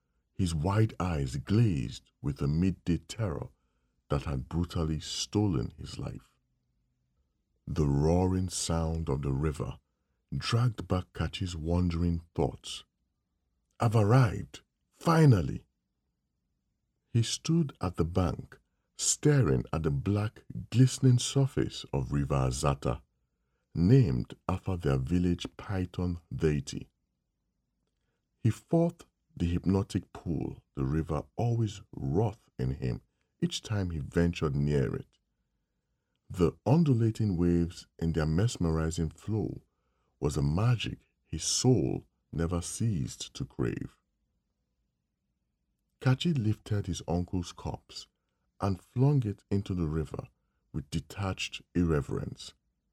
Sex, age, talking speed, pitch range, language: male, 50-69, 110 wpm, 75-115 Hz, English